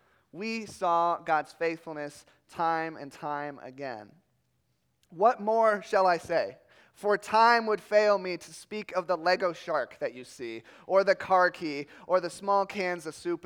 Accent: American